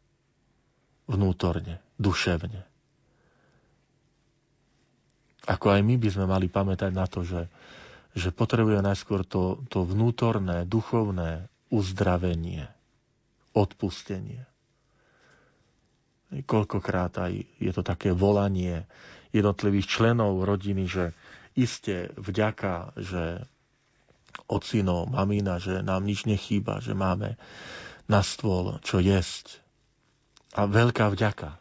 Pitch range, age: 90-110 Hz, 40-59